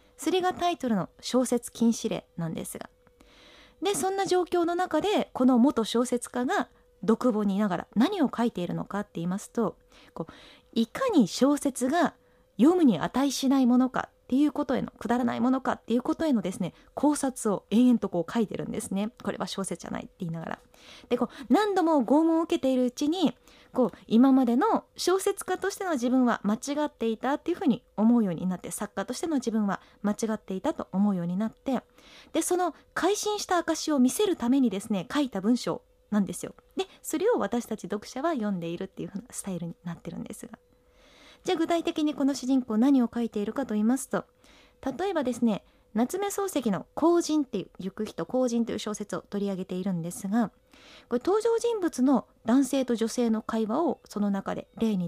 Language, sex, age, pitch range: Japanese, female, 20-39, 215-300 Hz